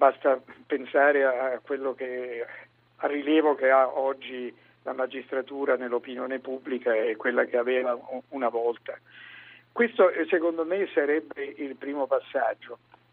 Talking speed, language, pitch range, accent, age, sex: 125 wpm, Italian, 130-195 Hz, native, 50-69, male